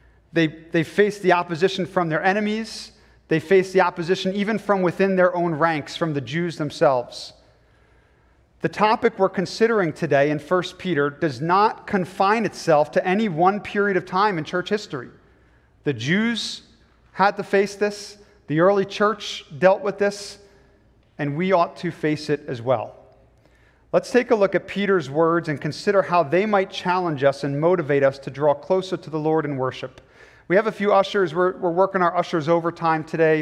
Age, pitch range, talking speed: 40-59, 145-190 Hz, 180 wpm